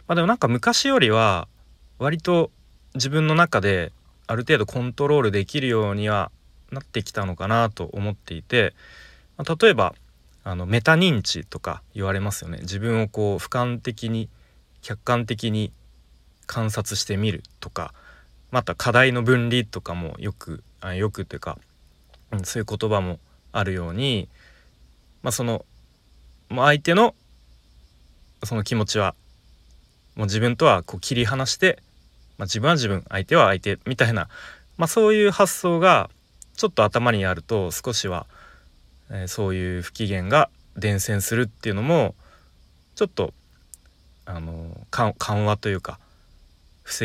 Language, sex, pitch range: Japanese, male, 80-120 Hz